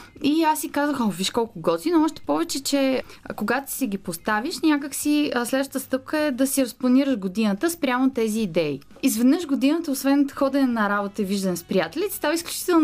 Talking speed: 180 wpm